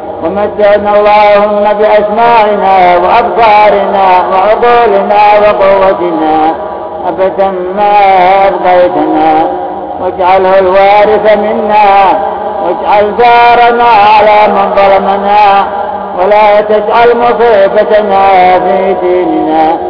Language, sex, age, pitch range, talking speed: Arabic, male, 50-69, 185-210 Hz, 65 wpm